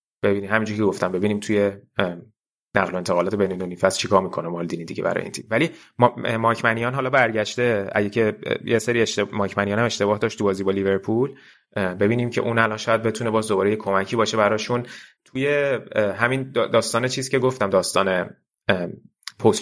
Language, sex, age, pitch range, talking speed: Persian, male, 30-49, 100-115 Hz, 170 wpm